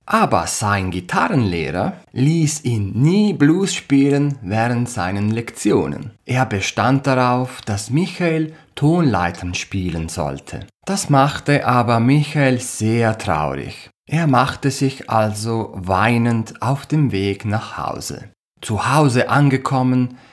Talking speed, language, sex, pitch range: 110 wpm, German, male, 100-150 Hz